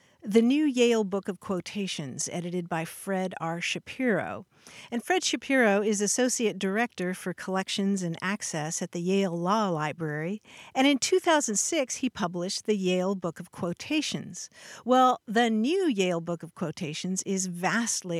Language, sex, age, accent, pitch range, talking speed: English, female, 50-69, American, 180-245 Hz, 150 wpm